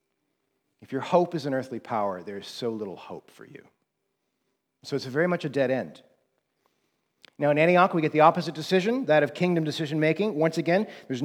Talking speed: 190 wpm